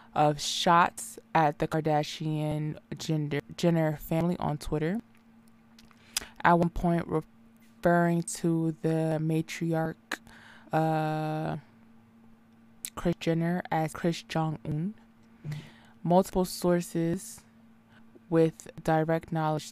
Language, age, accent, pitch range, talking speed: English, 20-39, American, 140-170 Hz, 90 wpm